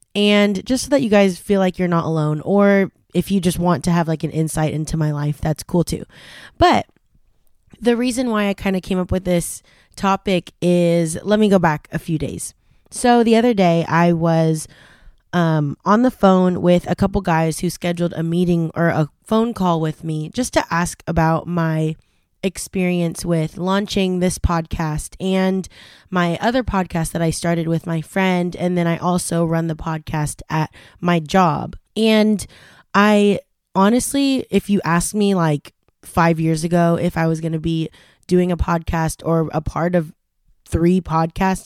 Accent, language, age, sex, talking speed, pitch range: American, English, 20-39, female, 185 wpm, 165-200 Hz